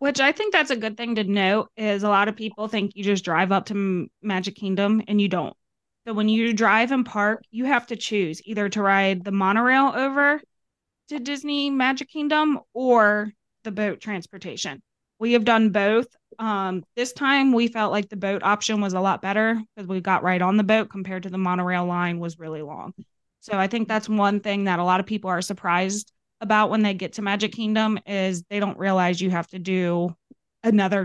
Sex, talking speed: female, 215 wpm